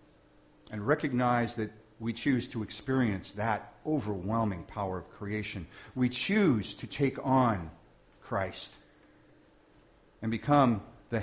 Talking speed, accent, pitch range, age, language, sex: 110 wpm, American, 100-130 Hz, 50-69, English, male